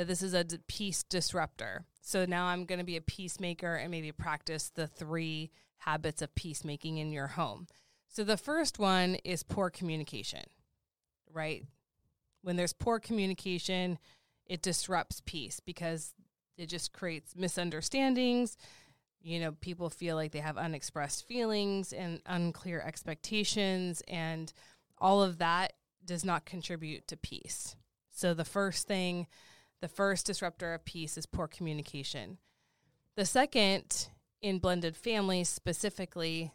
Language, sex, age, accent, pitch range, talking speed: English, female, 20-39, American, 160-185 Hz, 135 wpm